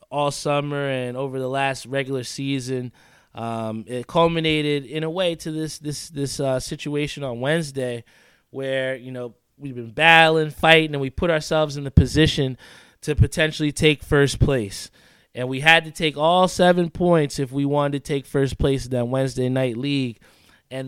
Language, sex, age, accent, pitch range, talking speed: English, male, 20-39, American, 135-165 Hz, 175 wpm